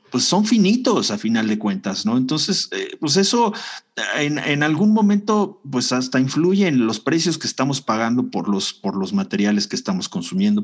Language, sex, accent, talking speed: Spanish, male, Mexican, 180 wpm